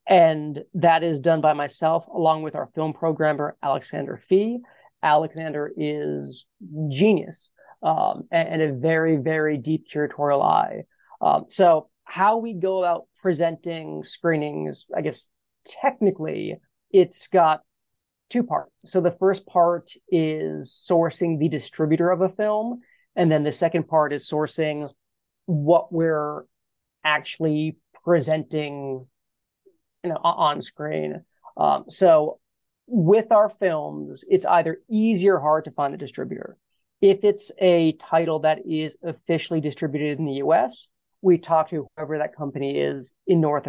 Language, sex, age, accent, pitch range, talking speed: English, male, 30-49, American, 150-175 Hz, 135 wpm